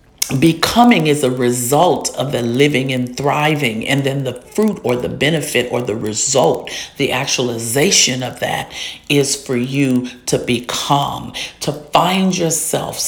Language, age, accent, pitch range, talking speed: English, 50-69, American, 130-160 Hz, 140 wpm